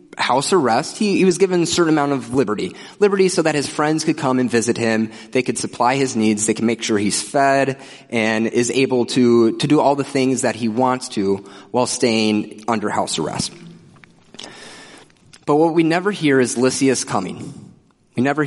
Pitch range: 125-175 Hz